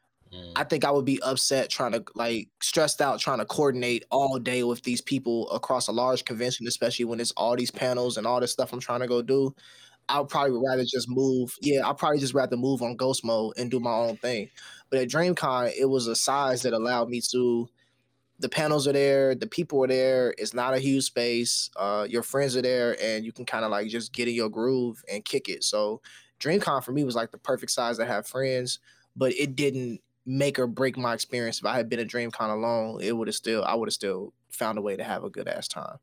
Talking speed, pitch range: 240 wpm, 120-135 Hz